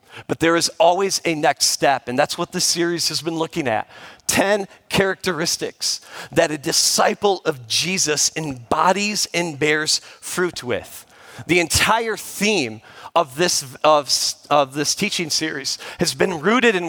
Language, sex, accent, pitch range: English, male, American, 165-210 Hz